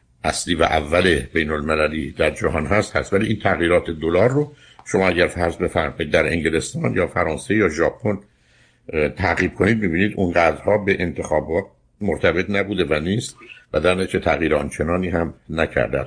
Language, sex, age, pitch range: Persian, male, 60-79, 70-90 Hz